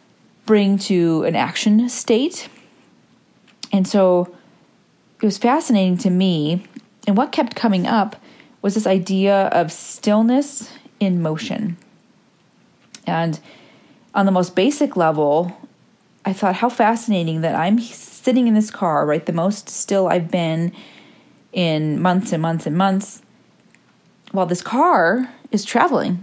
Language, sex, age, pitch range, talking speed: English, female, 30-49, 175-220 Hz, 130 wpm